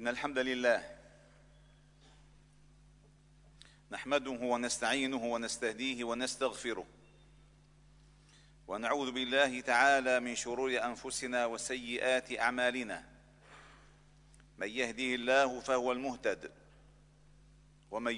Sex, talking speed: male, 70 wpm